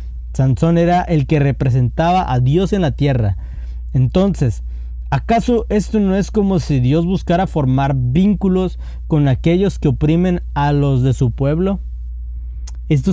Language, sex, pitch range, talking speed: Spanish, male, 115-175 Hz, 140 wpm